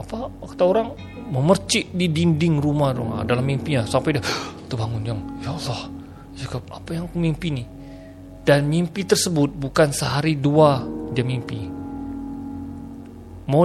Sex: male